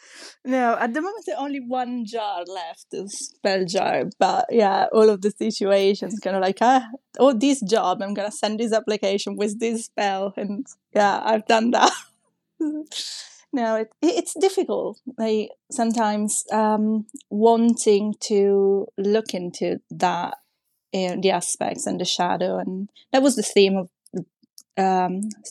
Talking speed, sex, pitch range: 160 wpm, female, 190-235 Hz